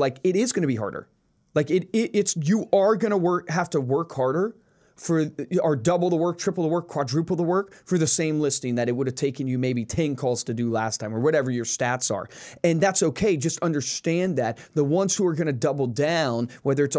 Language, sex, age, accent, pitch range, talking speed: English, male, 30-49, American, 135-195 Hz, 245 wpm